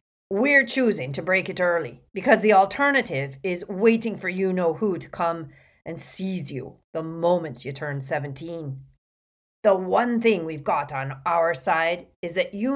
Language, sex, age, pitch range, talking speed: English, female, 40-59, 150-190 Hz, 170 wpm